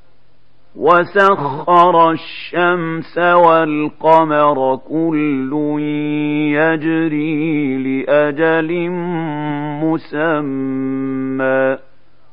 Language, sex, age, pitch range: Arabic, male, 50-69, 135-165 Hz